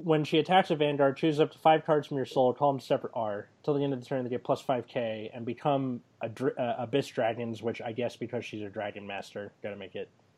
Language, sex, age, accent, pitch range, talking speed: English, male, 20-39, American, 120-145 Hz, 260 wpm